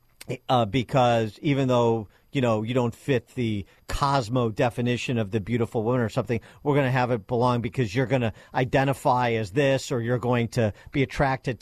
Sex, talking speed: male, 200 wpm